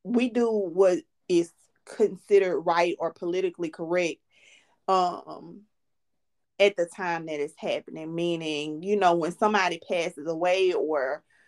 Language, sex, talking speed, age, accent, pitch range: English, female, 125 wpm, 30-49, American, 165-190 Hz